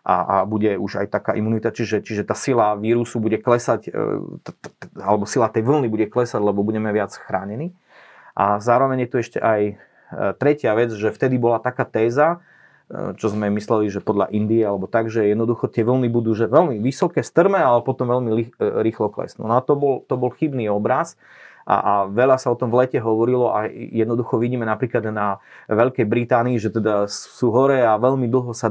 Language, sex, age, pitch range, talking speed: Slovak, male, 30-49, 110-125 Hz, 195 wpm